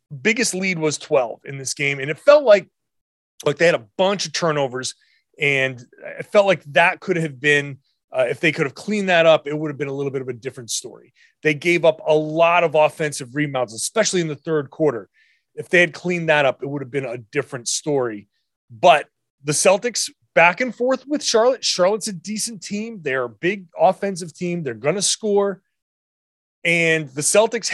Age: 30-49